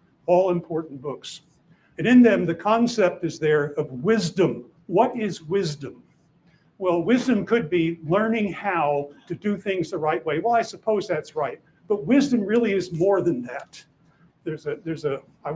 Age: 60-79